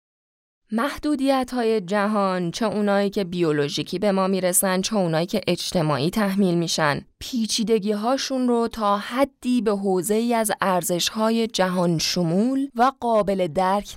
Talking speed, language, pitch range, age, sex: 130 wpm, Persian, 180-225 Hz, 20-39, female